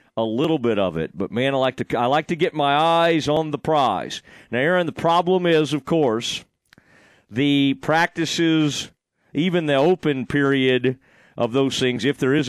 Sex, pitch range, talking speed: male, 125-160 Hz, 185 wpm